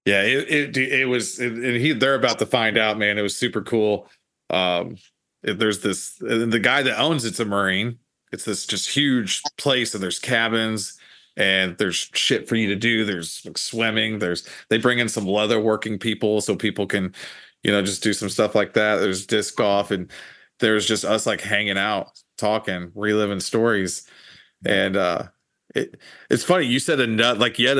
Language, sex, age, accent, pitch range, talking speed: English, male, 30-49, American, 100-115 Hz, 190 wpm